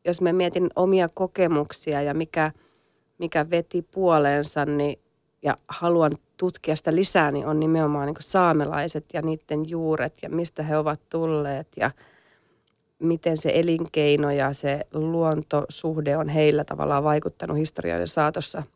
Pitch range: 150-170 Hz